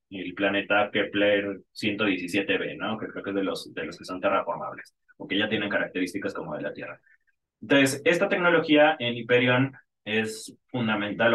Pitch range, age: 110-135 Hz, 30-49